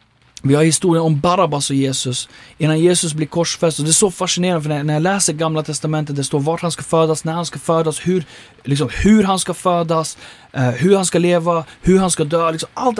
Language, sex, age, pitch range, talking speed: Swedish, male, 30-49, 150-205 Hz, 215 wpm